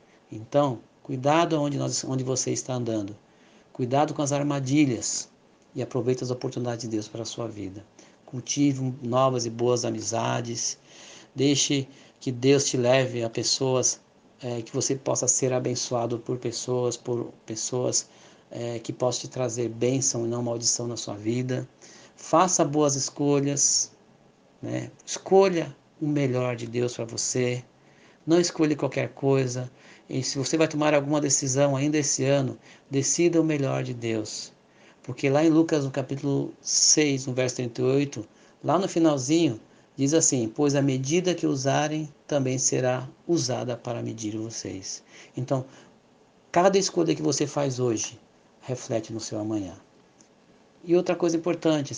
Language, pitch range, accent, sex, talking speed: Portuguese, 120-145 Hz, Brazilian, male, 145 wpm